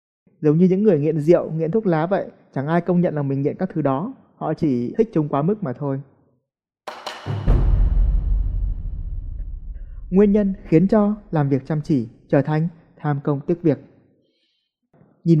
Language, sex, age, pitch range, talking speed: Vietnamese, male, 20-39, 140-190 Hz, 170 wpm